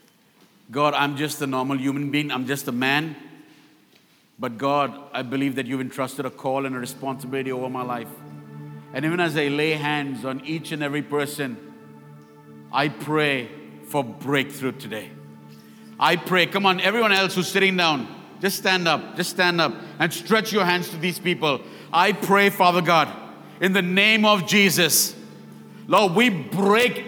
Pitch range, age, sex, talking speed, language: 145-220 Hz, 50-69, male, 170 wpm, English